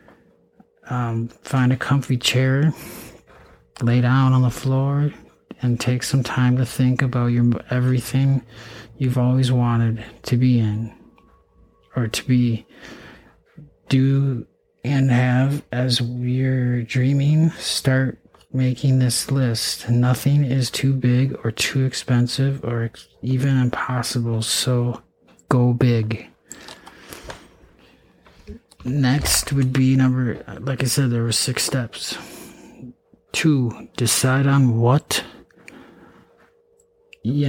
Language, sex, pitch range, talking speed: English, male, 120-135 Hz, 105 wpm